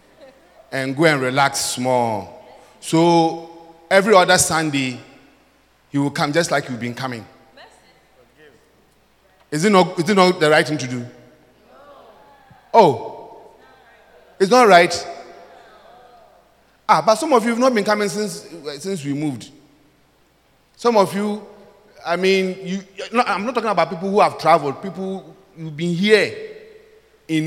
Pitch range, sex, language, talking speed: 125-185 Hz, male, English, 145 wpm